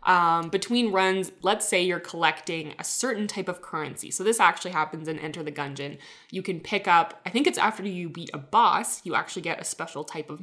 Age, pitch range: 20-39, 160-210 Hz